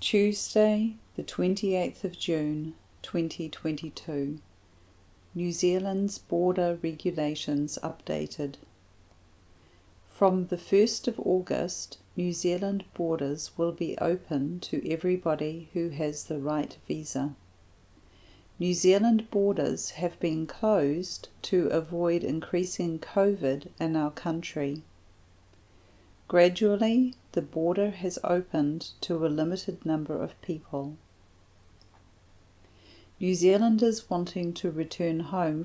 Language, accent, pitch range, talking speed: English, Australian, 140-180 Hz, 100 wpm